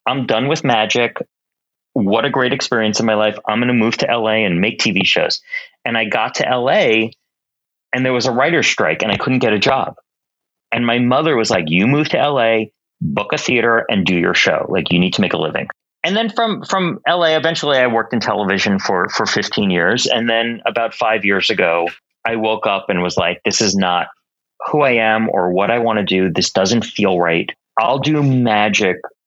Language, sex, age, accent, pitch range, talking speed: English, male, 30-49, American, 105-140 Hz, 215 wpm